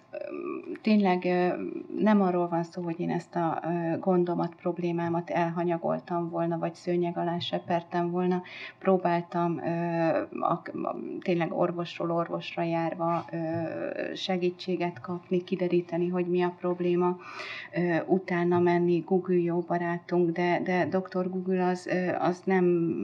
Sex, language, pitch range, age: female, Hungarian, 165-180 Hz, 30-49